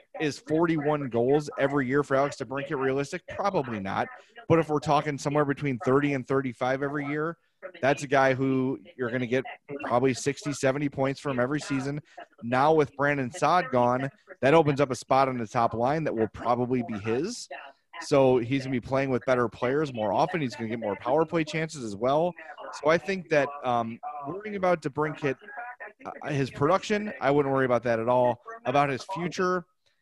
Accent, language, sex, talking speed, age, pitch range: American, English, male, 200 wpm, 30-49, 125-155 Hz